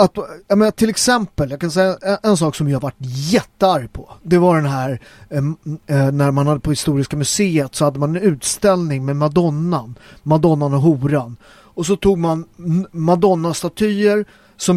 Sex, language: male, Swedish